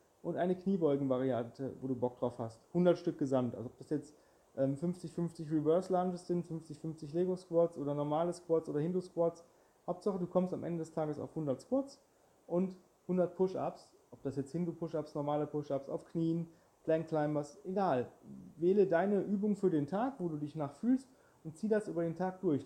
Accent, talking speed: German, 170 wpm